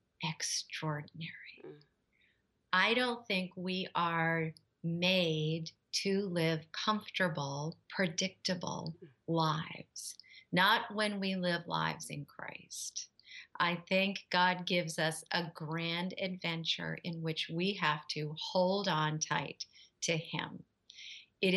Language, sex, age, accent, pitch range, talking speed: English, female, 40-59, American, 160-185 Hz, 105 wpm